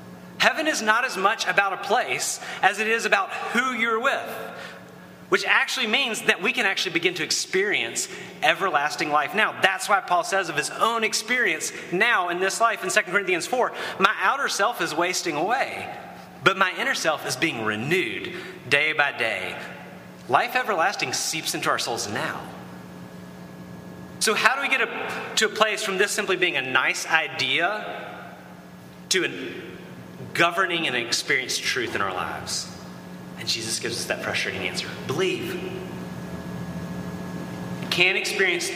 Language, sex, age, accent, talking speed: English, male, 30-49, American, 160 wpm